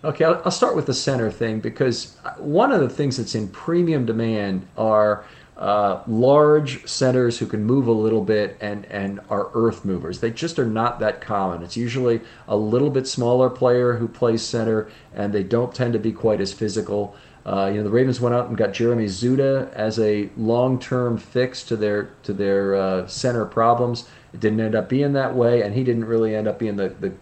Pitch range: 100-125 Hz